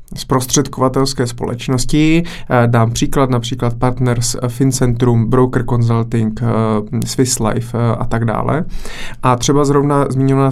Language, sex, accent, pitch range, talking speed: Czech, male, native, 120-135 Hz, 105 wpm